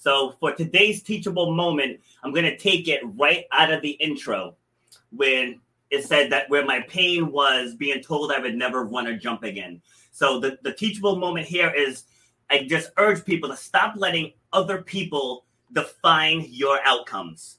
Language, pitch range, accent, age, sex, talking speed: English, 135-170 Hz, American, 30-49, male, 175 wpm